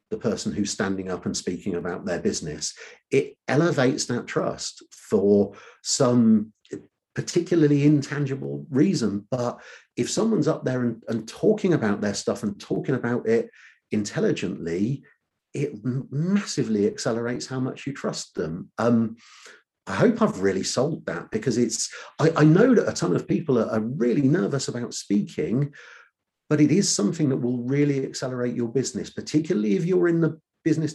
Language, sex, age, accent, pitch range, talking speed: English, male, 50-69, British, 110-150 Hz, 155 wpm